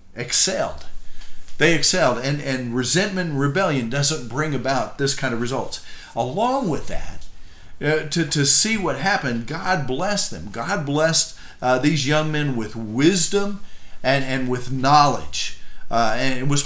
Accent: American